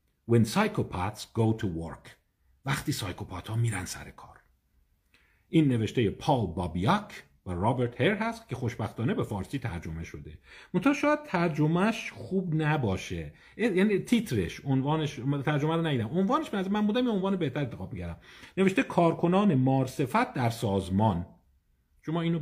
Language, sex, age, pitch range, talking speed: Persian, male, 50-69, 105-155 Hz, 135 wpm